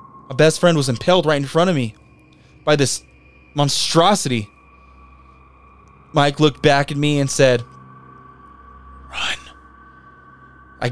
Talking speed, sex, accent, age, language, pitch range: 120 wpm, male, American, 20-39, English, 110-145 Hz